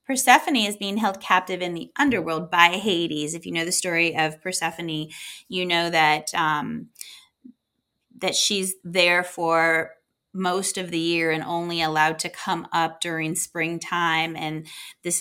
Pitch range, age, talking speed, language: 160-210 Hz, 20-39, 150 wpm, English